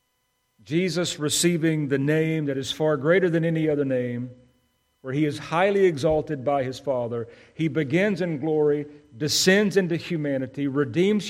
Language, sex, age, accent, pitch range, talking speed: English, male, 50-69, American, 125-155 Hz, 150 wpm